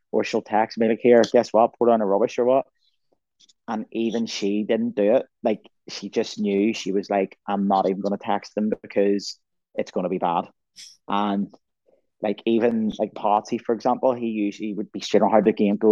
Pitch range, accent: 100-115 Hz, British